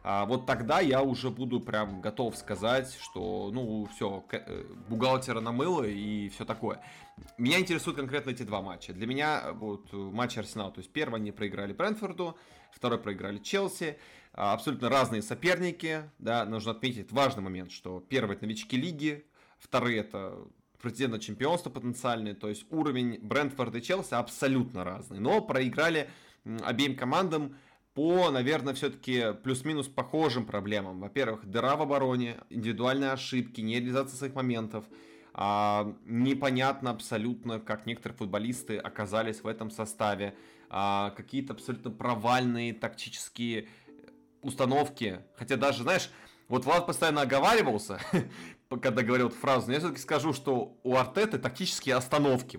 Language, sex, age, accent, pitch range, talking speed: Russian, male, 20-39, native, 110-135 Hz, 135 wpm